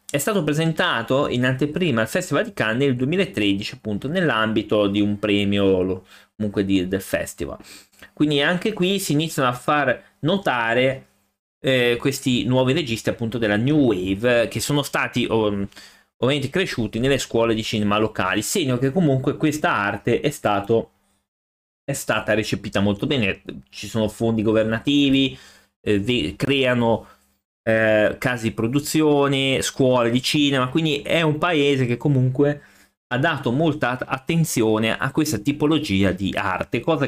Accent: native